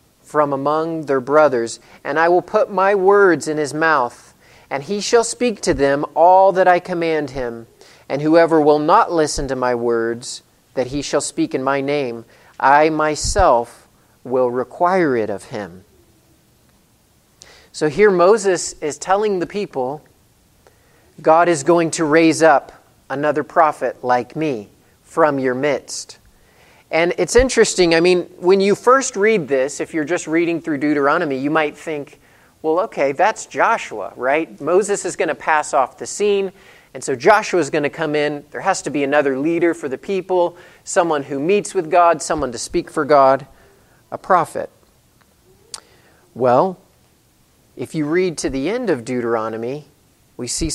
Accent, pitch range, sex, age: American, 140-175 Hz, male, 40-59